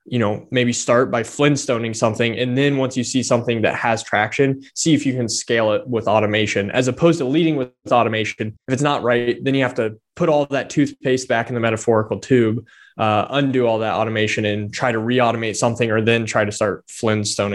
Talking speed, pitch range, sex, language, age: 215 wpm, 110-130 Hz, male, English, 20-39